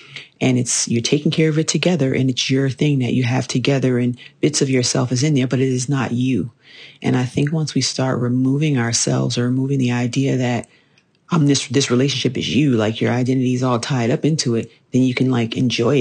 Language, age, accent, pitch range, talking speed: English, 40-59, American, 125-150 Hz, 230 wpm